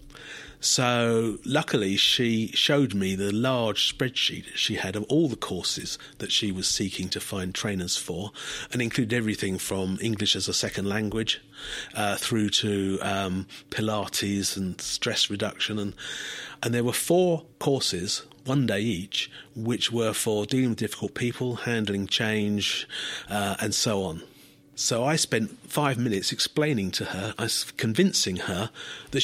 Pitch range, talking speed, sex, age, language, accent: 100-130 Hz, 150 wpm, male, 40-59, English, British